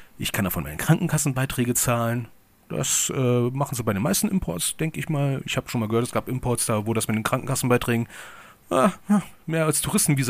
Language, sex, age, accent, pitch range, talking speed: German, male, 40-59, German, 115-165 Hz, 205 wpm